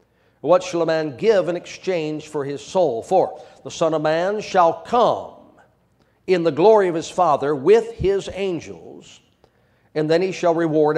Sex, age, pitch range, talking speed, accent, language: male, 50-69, 150-185 Hz, 170 wpm, American, English